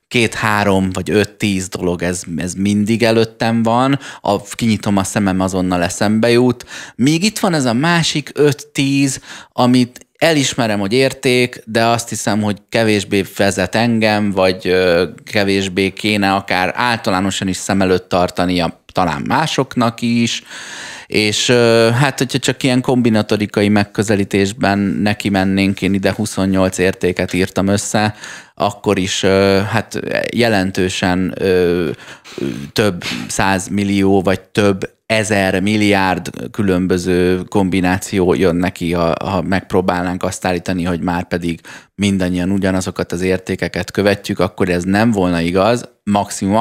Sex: male